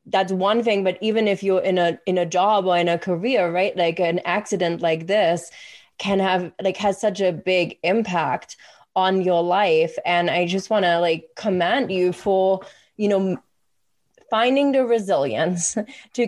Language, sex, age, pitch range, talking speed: English, female, 20-39, 175-215 Hz, 175 wpm